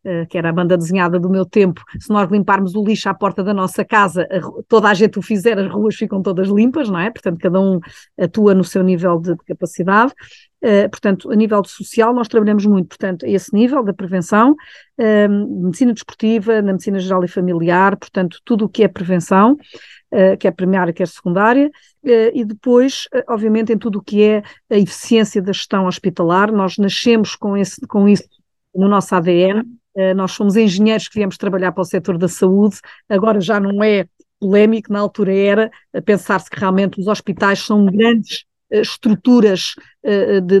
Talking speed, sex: 190 wpm, female